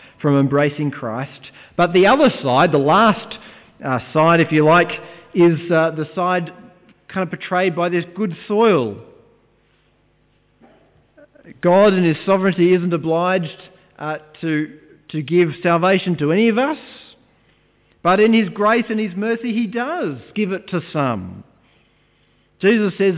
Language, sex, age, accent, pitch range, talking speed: English, male, 40-59, Australian, 155-205 Hz, 135 wpm